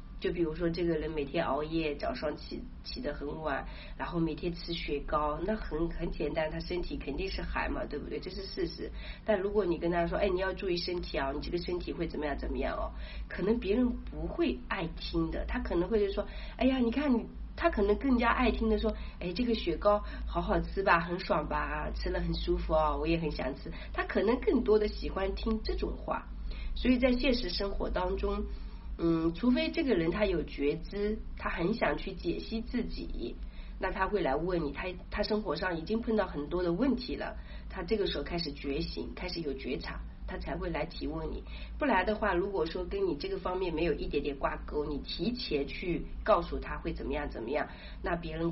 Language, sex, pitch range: Chinese, female, 160-215 Hz